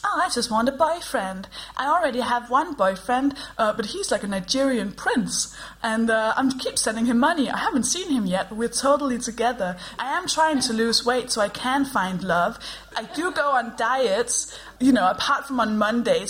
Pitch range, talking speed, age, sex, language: 195-250 Hz, 210 wpm, 20-39, female, English